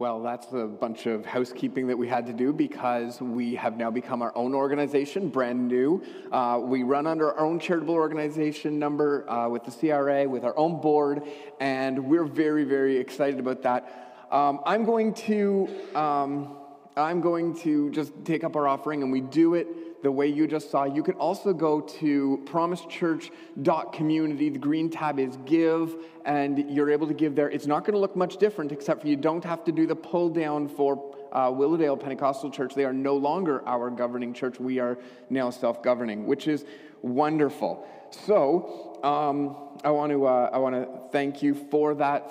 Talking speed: 190 wpm